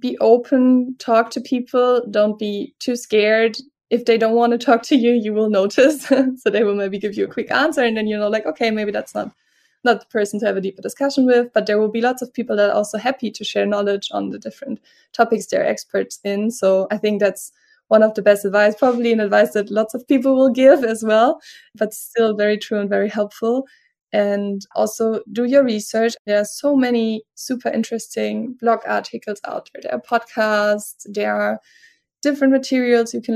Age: 20-39